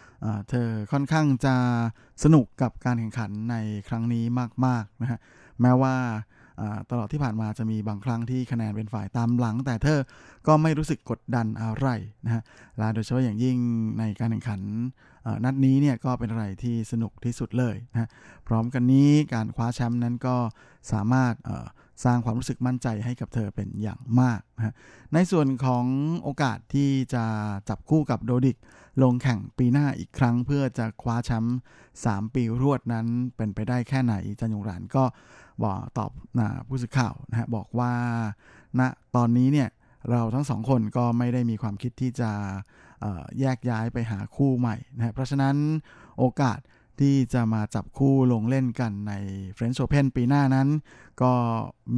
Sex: male